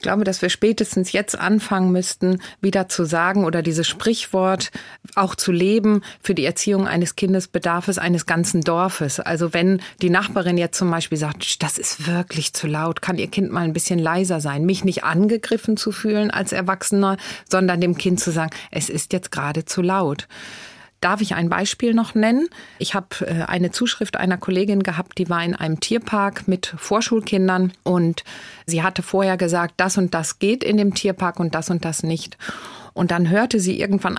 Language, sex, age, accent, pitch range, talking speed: German, female, 30-49, German, 175-205 Hz, 185 wpm